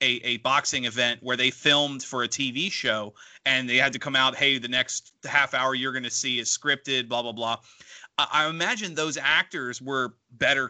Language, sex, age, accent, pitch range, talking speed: English, male, 30-49, American, 125-150 Hz, 215 wpm